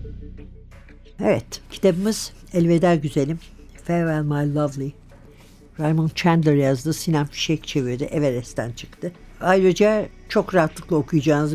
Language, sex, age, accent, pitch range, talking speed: Turkish, female, 60-79, native, 145-180 Hz, 100 wpm